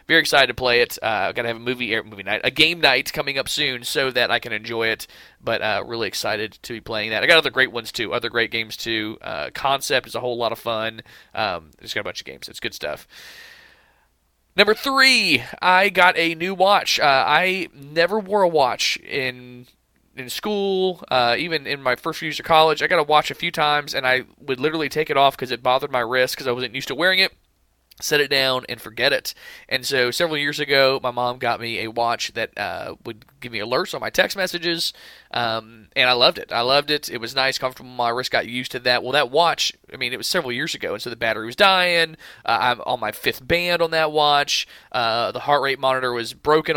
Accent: American